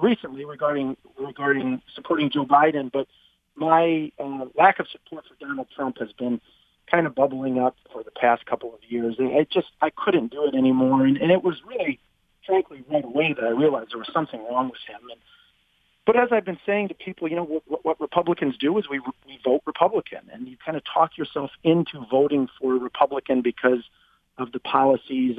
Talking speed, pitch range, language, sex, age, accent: 205 wpm, 125-160 Hz, English, male, 40-59, American